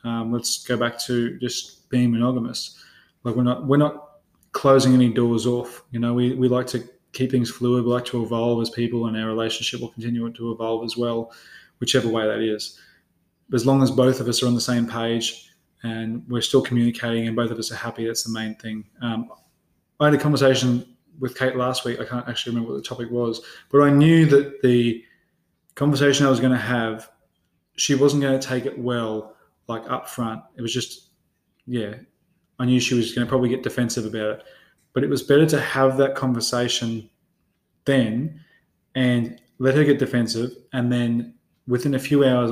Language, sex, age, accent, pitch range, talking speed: English, male, 20-39, Australian, 115-130 Hz, 200 wpm